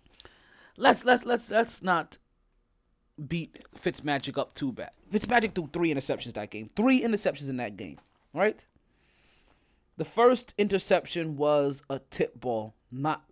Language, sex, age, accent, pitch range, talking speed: English, male, 20-39, American, 135-190 Hz, 135 wpm